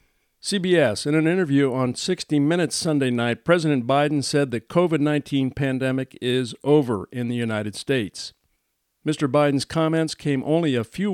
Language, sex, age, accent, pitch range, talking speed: English, male, 50-69, American, 130-155 Hz, 150 wpm